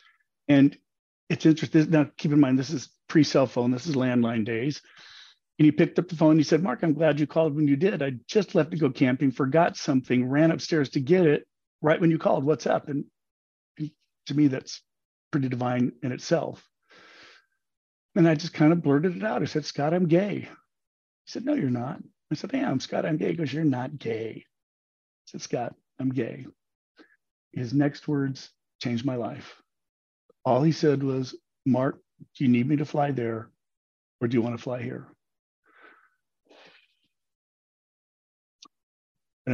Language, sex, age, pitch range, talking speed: English, male, 40-59, 130-160 Hz, 180 wpm